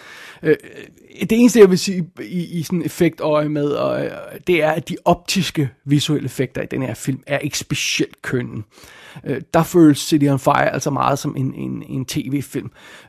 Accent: native